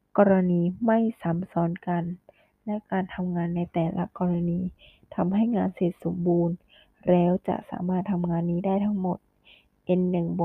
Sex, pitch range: female, 175-200 Hz